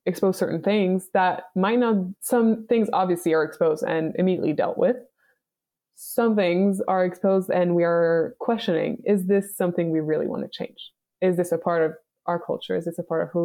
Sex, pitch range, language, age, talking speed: female, 175-235 Hz, English, 20-39, 195 wpm